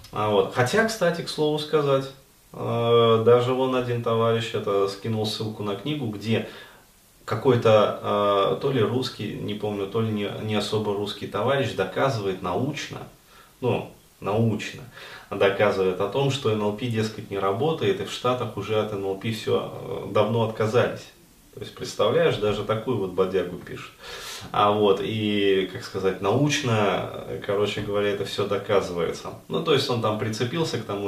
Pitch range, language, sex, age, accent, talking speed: 100-125 Hz, Russian, male, 20-39, native, 145 wpm